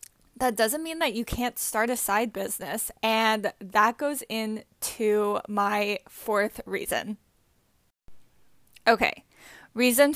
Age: 10-29